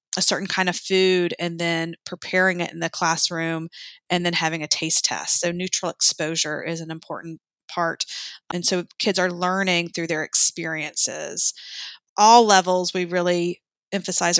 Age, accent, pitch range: 30-49, American, 170-200 Hz